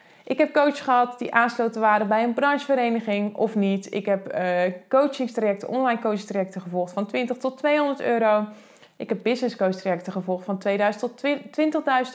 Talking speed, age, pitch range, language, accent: 150 wpm, 20-39, 195-250 Hz, Dutch, Dutch